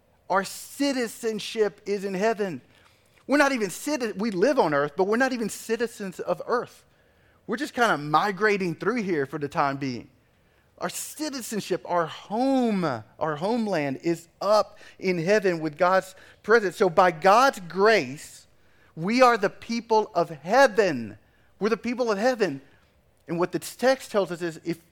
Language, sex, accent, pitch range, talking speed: English, male, American, 150-220 Hz, 160 wpm